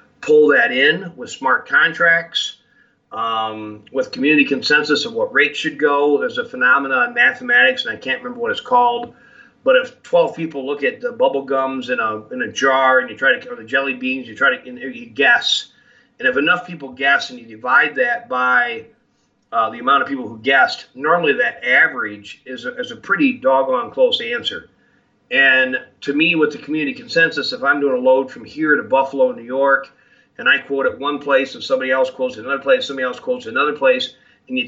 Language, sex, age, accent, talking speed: English, male, 40-59, American, 210 wpm